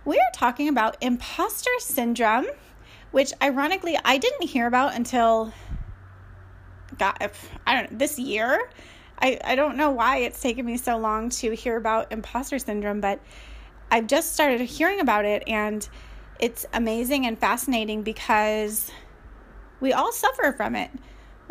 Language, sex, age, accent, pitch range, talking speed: English, female, 30-49, American, 220-280 Hz, 150 wpm